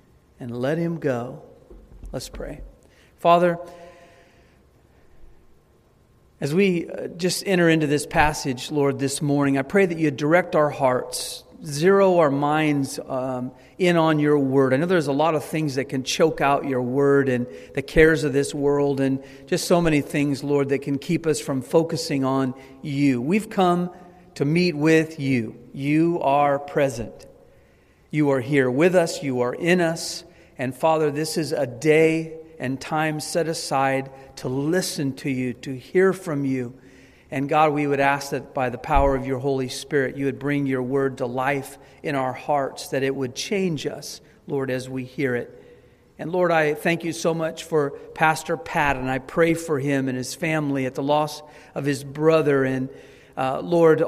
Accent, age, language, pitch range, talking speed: American, 40-59, English, 135-165 Hz, 180 wpm